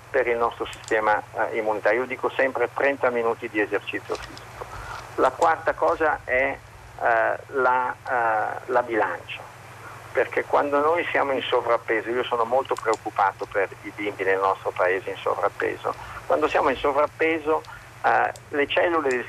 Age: 50-69